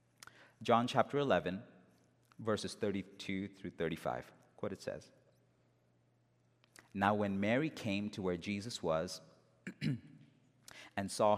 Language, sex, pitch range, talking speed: English, male, 95-135 Hz, 105 wpm